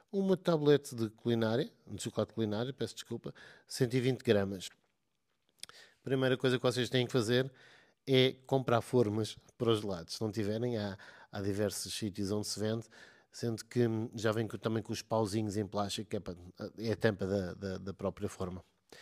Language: Portuguese